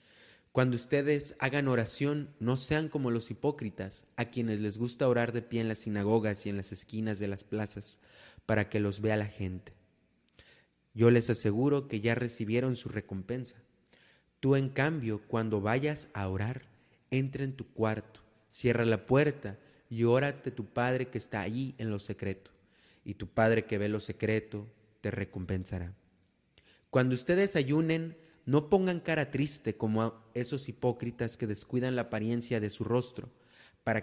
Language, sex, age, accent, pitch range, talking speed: Spanish, male, 30-49, Mexican, 105-125 Hz, 160 wpm